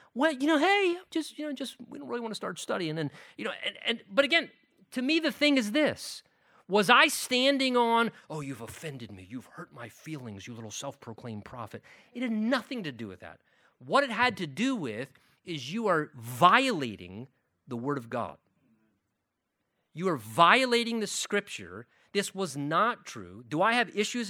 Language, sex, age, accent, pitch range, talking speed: English, male, 40-59, American, 145-235 Hz, 195 wpm